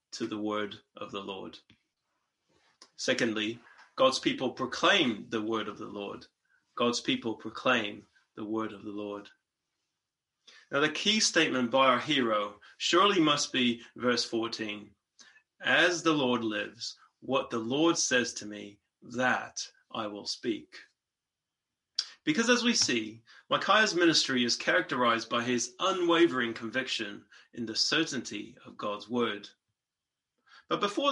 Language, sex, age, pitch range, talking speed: English, male, 20-39, 110-165 Hz, 135 wpm